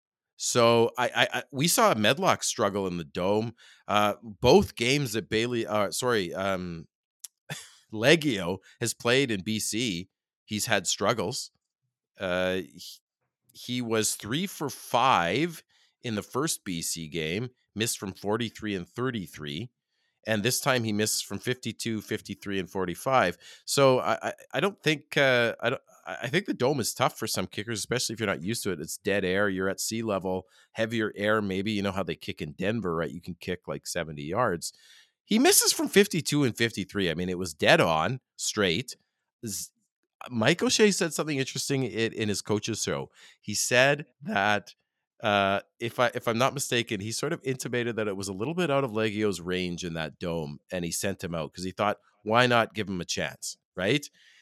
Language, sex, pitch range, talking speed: English, male, 95-130 Hz, 195 wpm